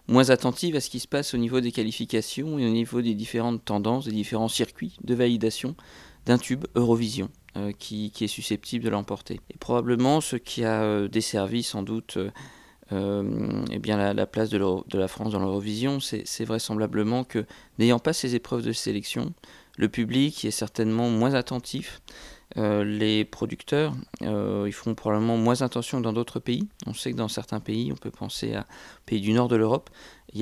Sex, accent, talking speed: male, French, 185 wpm